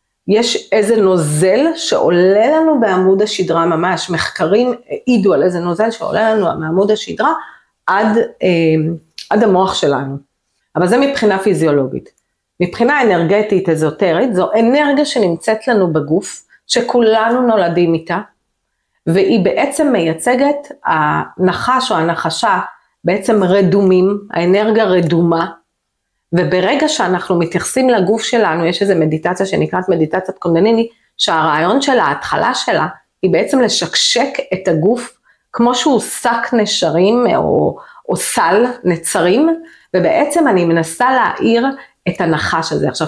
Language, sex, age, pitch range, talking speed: Hebrew, female, 40-59, 170-230 Hz, 115 wpm